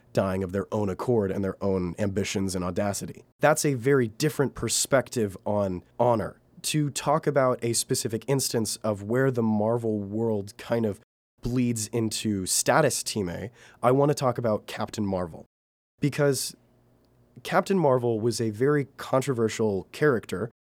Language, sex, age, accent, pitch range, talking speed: English, male, 30-49, American, 100-125 Hz, 150 wpm